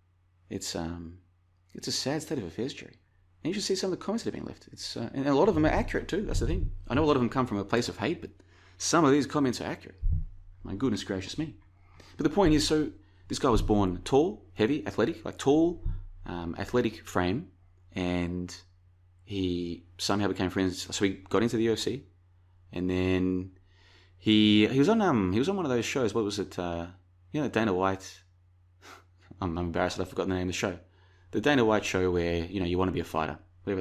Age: 30-49